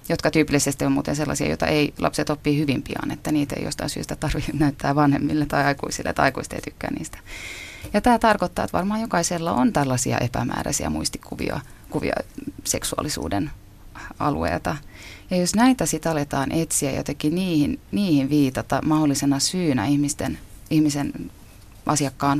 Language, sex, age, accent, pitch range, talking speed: Finnish, female, 30-49, native, 130-160 Hz, 140 wpm